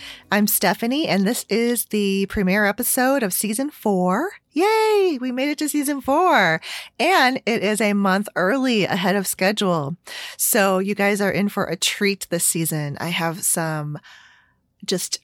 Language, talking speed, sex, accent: English, 160 wpm, female, American